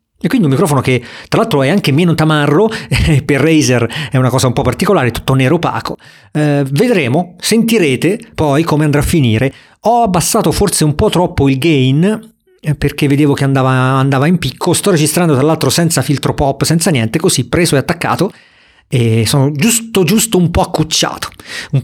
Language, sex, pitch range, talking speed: Italian, male, 140-185 Hz, 185 wpm